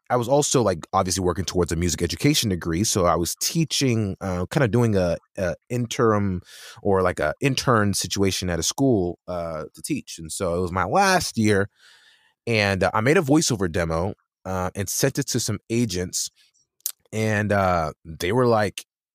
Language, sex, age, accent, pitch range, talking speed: English, male, 20-39, American, 95-125 Hz, 180 wpm